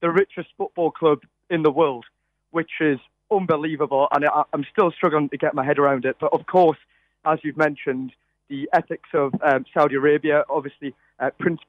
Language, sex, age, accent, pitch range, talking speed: English, male, 30-49, British, 145-185 Hz, 185 wpm